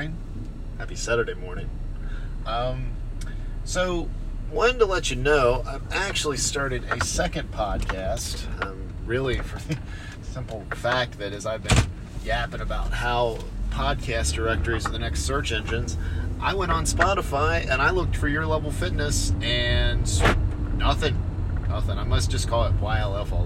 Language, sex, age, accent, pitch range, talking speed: English, male, 30-49, American, 90-115 Hz, 145 wpm